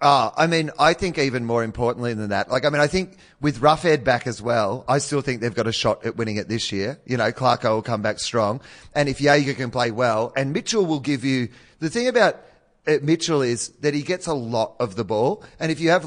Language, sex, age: English, male, 30-49